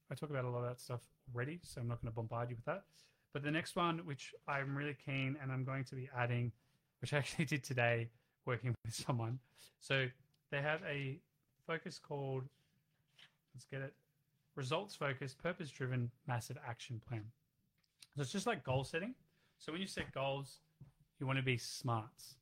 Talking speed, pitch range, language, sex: 185 wpm, 125-150 Hz, English, male